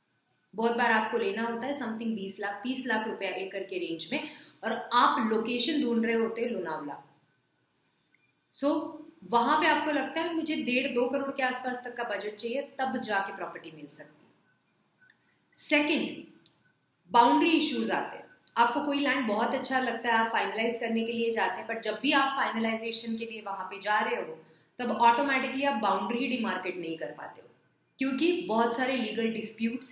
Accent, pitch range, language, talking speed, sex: native, 220-280 Hz, Hindi, 180 wpm, female